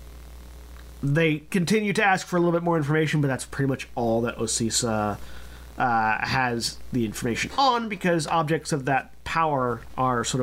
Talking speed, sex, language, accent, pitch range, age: 165 wpm, male, English, American, 115-170 Hz, 30-49